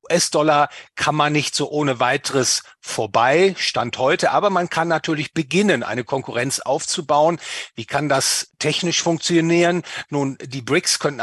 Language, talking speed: German, 145 wpm